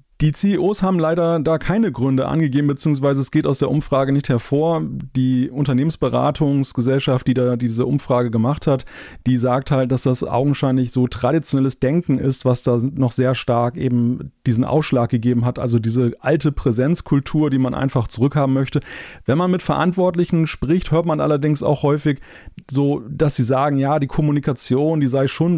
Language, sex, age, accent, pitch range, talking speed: German, male, 30-49, German, 125-150 Hz, 170 wpm